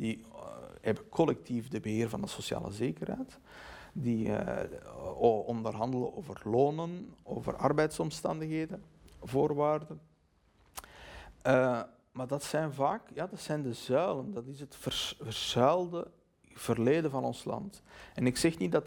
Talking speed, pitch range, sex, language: 120 wpm, 120-150 Hz, male, Dutch